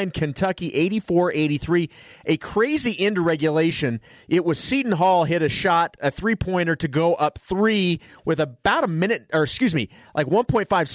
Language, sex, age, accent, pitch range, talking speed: English, male, 30-49, American, 135-175 Hz, 160 wpm